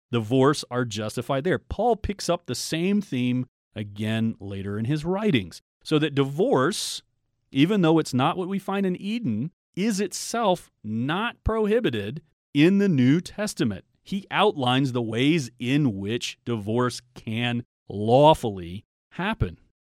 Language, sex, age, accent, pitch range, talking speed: English, male, 40-59, American, 125-165 Hz, 135 wpm